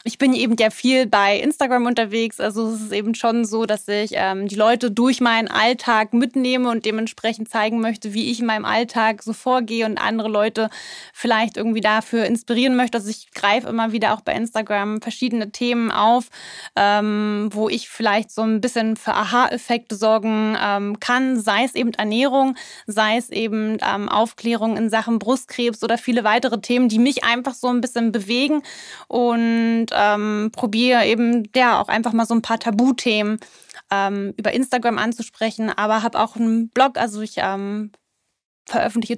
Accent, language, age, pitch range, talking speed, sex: German, German, 20-39, 215-240 Hz, 175 wpm, female